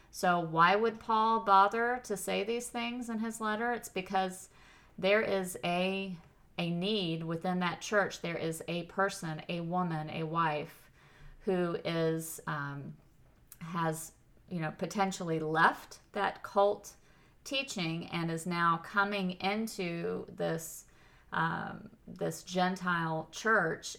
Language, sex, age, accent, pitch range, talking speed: English, female, 40-59, American, 160-195 Hz, 130 wpm